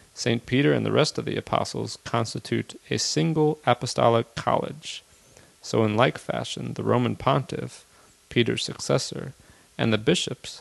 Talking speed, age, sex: 140 wpm, 30-49, male